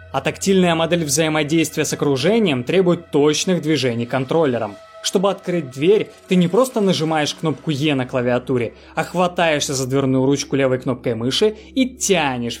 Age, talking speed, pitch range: 20-39, 150 wpm, 130-190 Hz